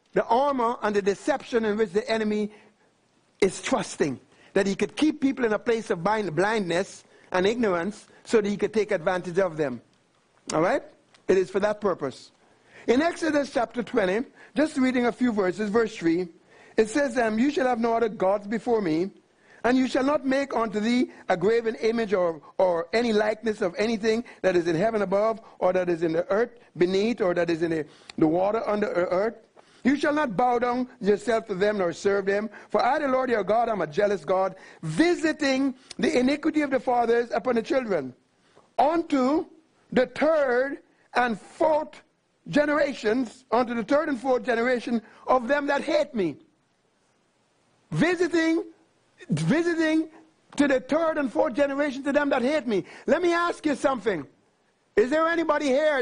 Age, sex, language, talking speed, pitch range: 60-79, male, English, 180 wpm, 205-280 Hz